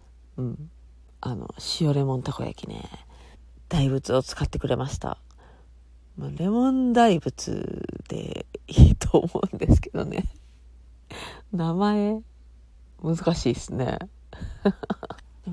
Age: 40-59